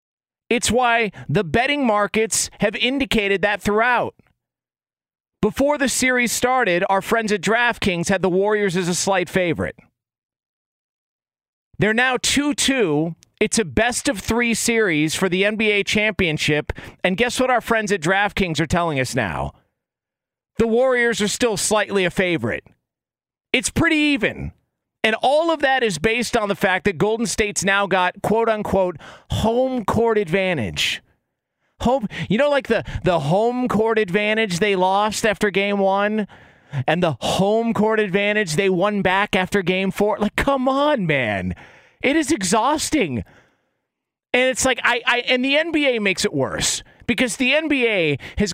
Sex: male